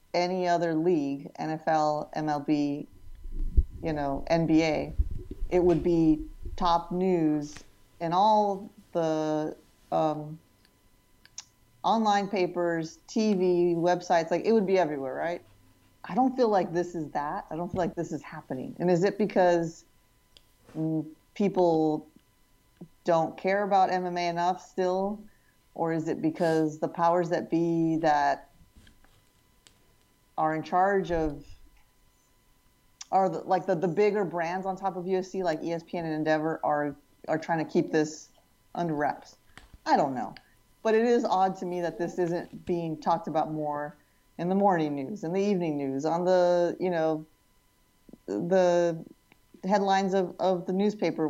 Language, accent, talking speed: English, American, 145 wpm